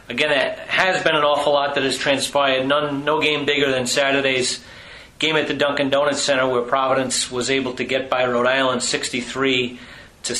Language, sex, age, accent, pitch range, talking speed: English, male, 40-59, American, 120-140 Hz, 190 wpm